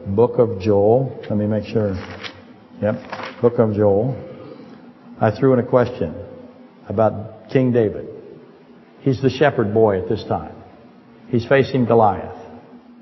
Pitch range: 105-130 Hz